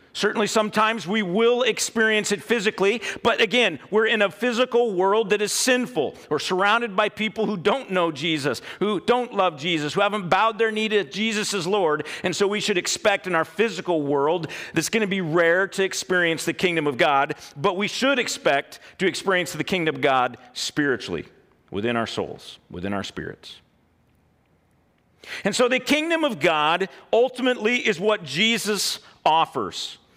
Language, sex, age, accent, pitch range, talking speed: English, male, 50-69, American, 160-220 Hz, 175 wpm